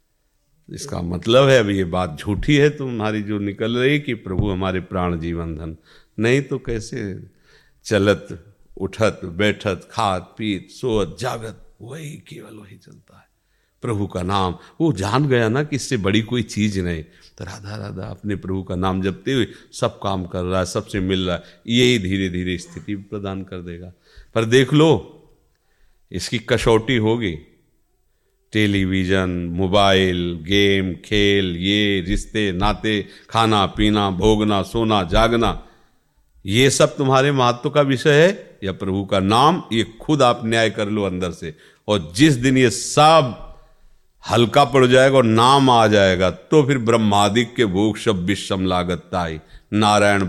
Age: 50-69